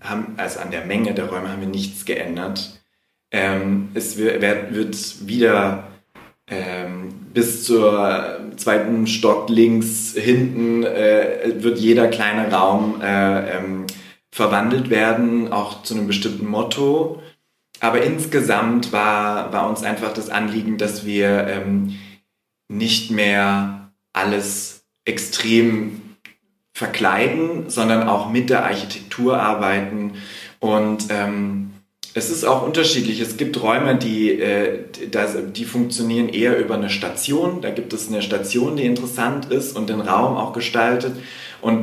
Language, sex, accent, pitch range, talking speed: German, male, German, 95-115 Hz, 130 wpm